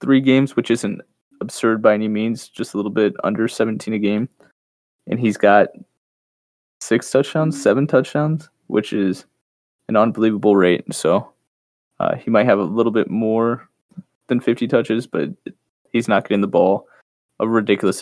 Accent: American